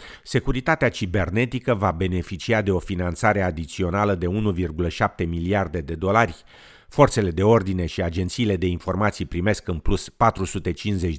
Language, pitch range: Romanian, 90-115 Hz